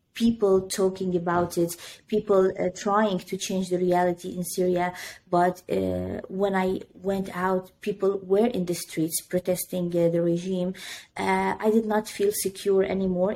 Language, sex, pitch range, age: English, female, 180-195 Hz, 20-39